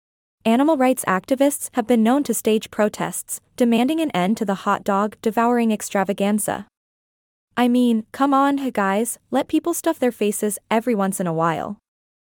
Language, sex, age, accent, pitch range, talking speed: English, female, 20-39, American, 195-250 Hz, 165 wpm